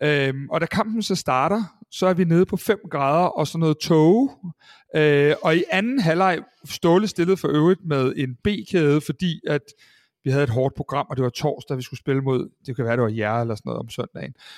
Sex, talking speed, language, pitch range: male, 225 wpm, Danish, 135-175 Hz